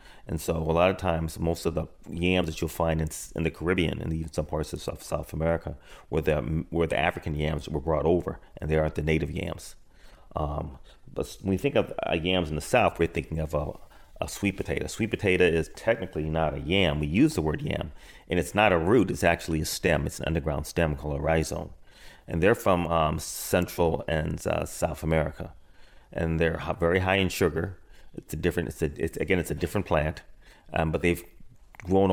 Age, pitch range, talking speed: 30-49, 80-90 Hz, 215 wpm